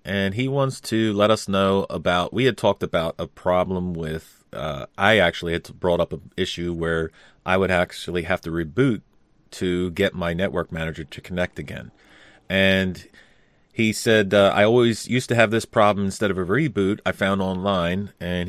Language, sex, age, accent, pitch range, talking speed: English, male, 30-49, American, 85-100 Hz, 185 wpm